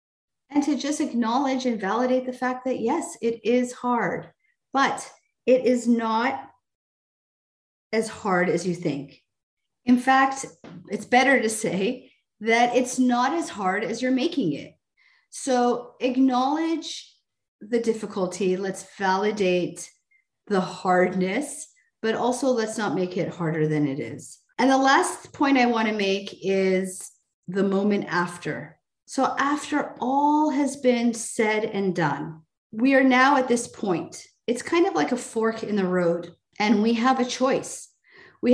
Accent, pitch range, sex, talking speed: American, 185-255 Hz, female, 150 wpm